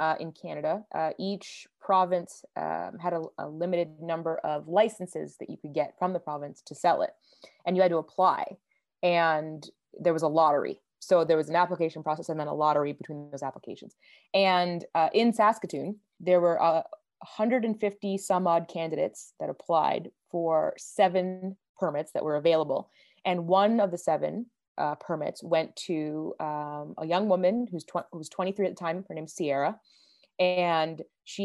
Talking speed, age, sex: 175 wpm, 20-39, female